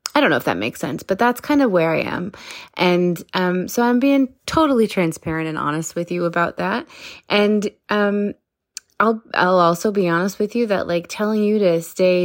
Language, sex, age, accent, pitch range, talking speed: English, female, 20-39, American, 175-230 Hz, 205 wpm